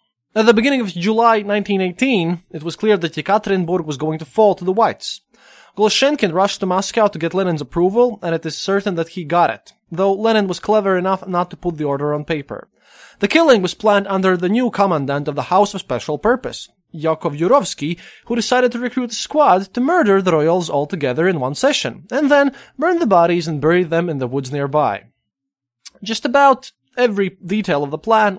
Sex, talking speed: male, 205 wpm